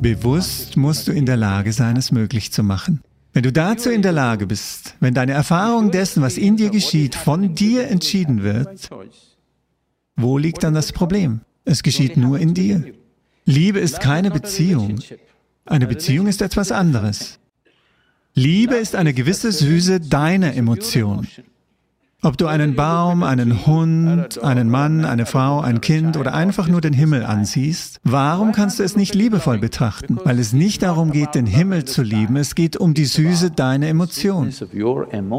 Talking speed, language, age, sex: 165 wpm, English, 50-69, male